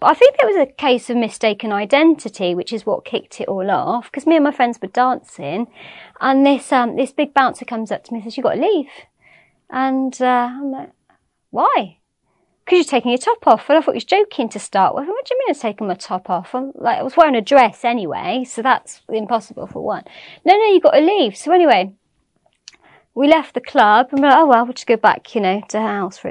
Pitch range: 220-280 Hz